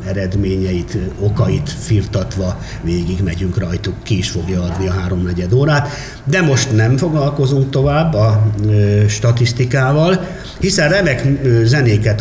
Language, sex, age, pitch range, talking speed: Hungarian, male, 50-69, 95-125 Hz, 115 wpm